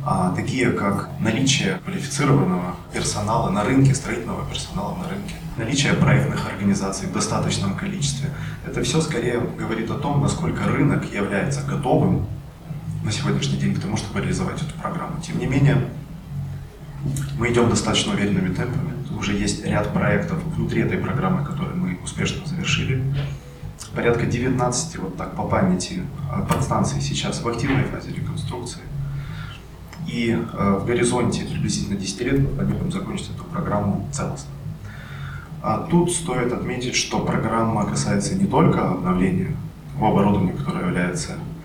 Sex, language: male, Ukrainian